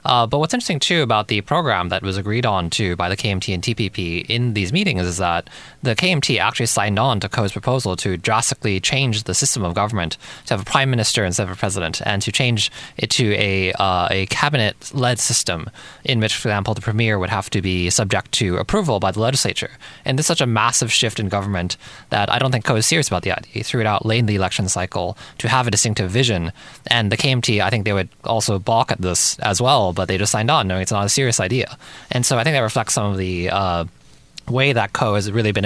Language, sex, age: English, male, 20-39